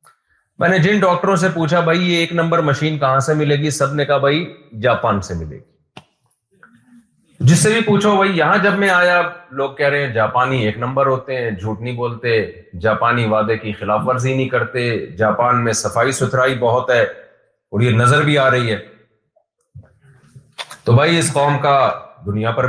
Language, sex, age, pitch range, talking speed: Urdu, male, 40-59, 115-160 Hz, 190 wpm